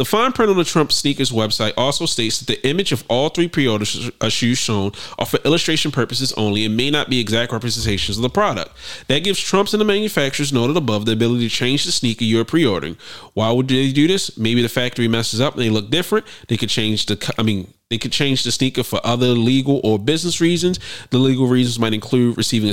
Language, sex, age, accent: English, male, 30-49, American